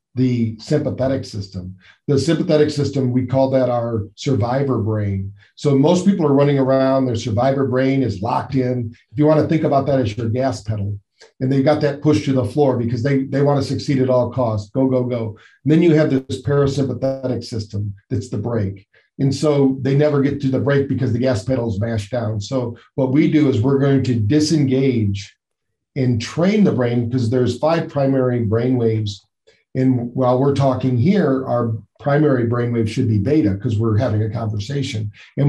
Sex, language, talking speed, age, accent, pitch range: male, English, 195 wpm, 40-59, American, 115-140 Hz